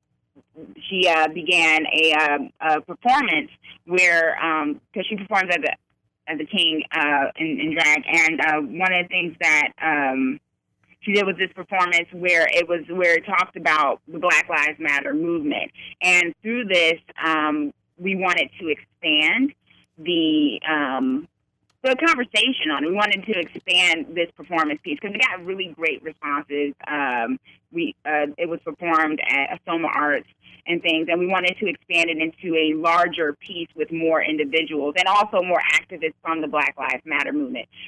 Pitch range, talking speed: 160-200 Hz, 170 wpm